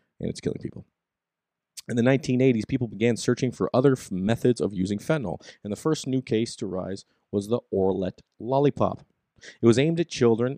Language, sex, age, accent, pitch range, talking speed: English, male, 30-49, American, 100-125 Hz, 185 wpm